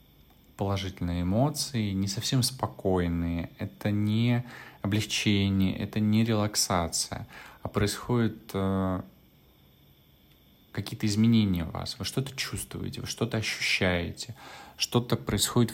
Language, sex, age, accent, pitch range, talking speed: Russian, male, 20-39, native, 90-110 Hz, 95 wpm